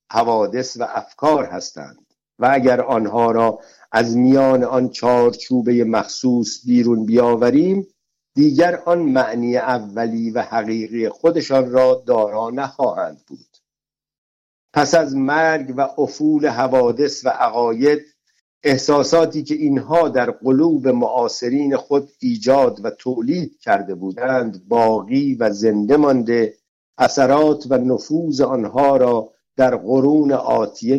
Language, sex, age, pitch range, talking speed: Persian, male, 60-79, 120-150 Hz, 110 wpm